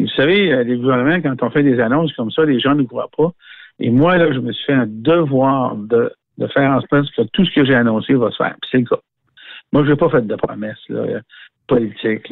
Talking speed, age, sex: 255 wpm, 60-79, male